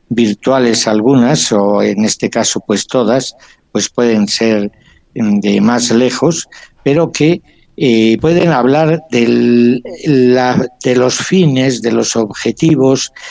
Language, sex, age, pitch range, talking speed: Spanish, male, 60-79, 110-135 Hz, 120 wpm